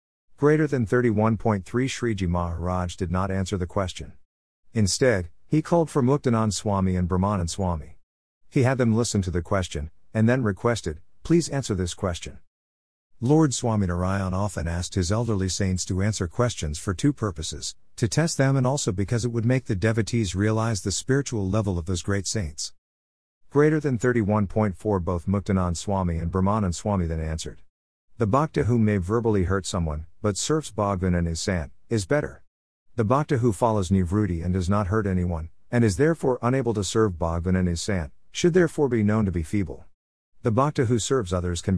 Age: 50-69